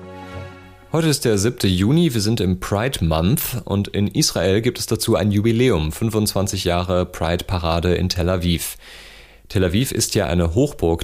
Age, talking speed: 30-49, 165 wpm